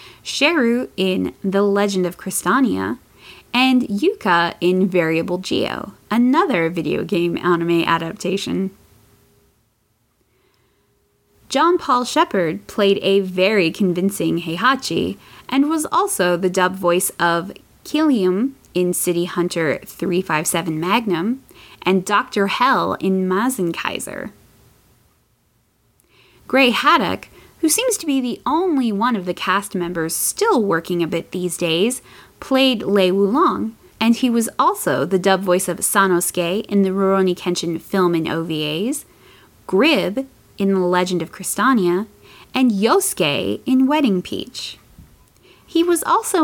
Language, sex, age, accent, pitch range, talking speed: English, female, 10-29, American, 175-250 Hz, 120 wpm